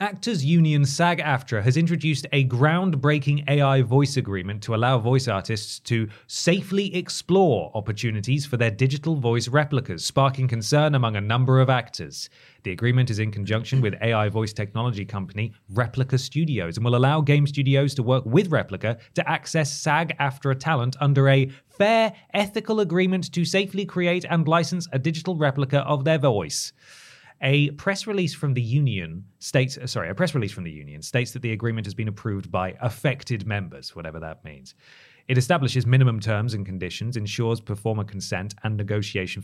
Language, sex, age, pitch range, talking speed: English, male, 20-39, 110-150 Hz, 165 wpm